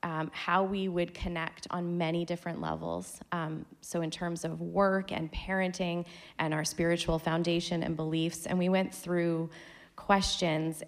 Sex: female